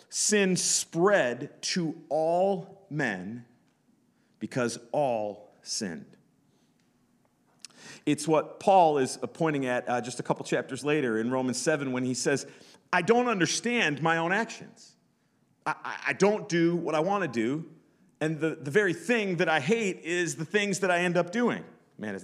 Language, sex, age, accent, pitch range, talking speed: English, male, 40-59, American, 115-160 Hz, 160 wpm